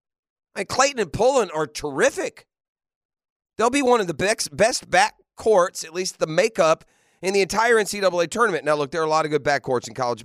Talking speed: 195 wpm